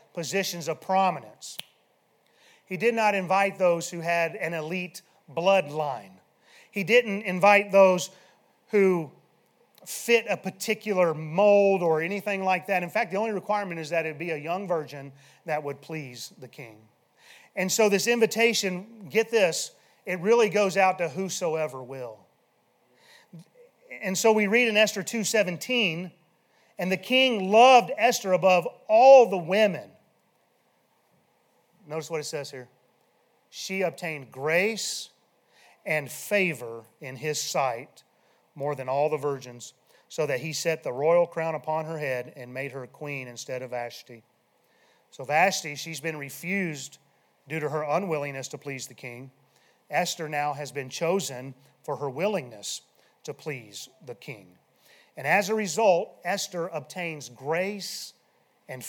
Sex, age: male, 30-49